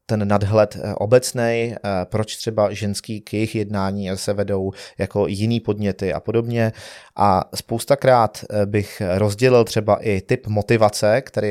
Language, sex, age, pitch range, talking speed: Czech, male, 30-49, 100-115 Hz, 130 wpm